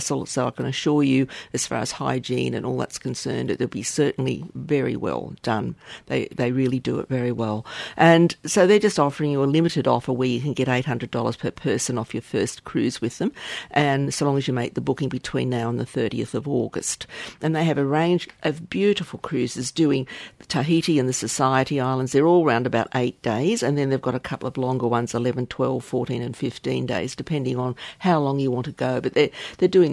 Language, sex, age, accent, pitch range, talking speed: English, female, 50-69, Australian, 125-155 Hz, 225 wpm